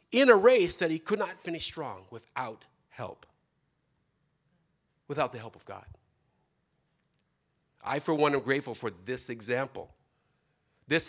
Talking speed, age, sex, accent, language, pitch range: 135 wpm, 50-69, male, American, English, 130-180 Hz